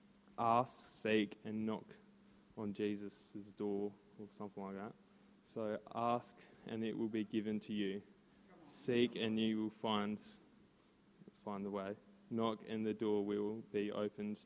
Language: English